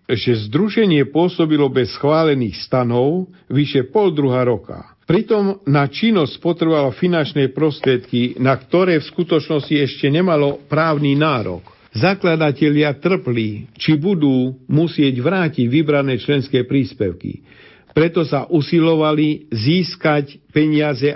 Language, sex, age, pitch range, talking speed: Slovak, male, 50-69, 125-155 Hz, 110 wpm